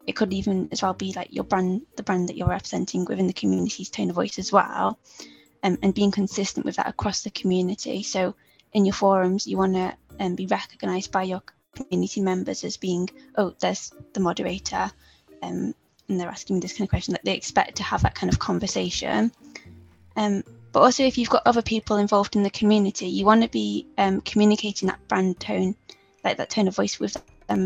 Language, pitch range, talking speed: English, 185-210 Hz, 210 wpm